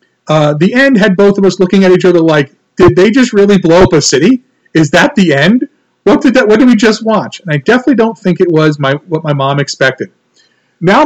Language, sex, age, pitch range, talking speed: English, male, 40-59, 135-195 Hz, 245 wpm